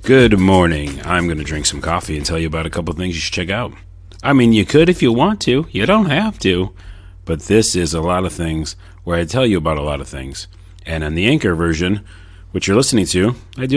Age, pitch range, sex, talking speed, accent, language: 40-59, 85-100 Hz, male, 255 wpm, American, English